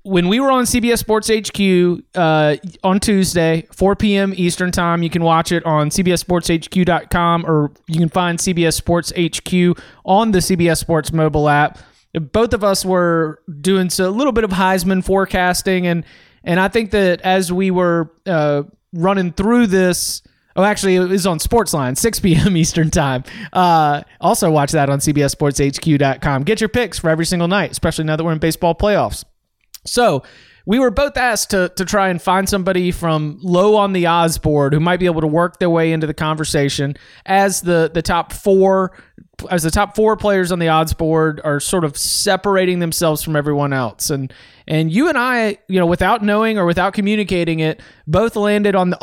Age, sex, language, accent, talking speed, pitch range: 30-49, male, English, American, 190 wpm, 155-190 Hz